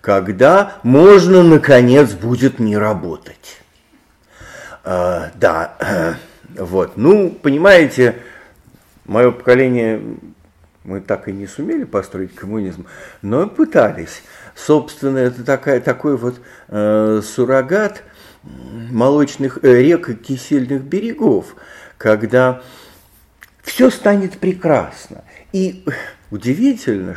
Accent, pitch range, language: native, 110-165 Hz, Russian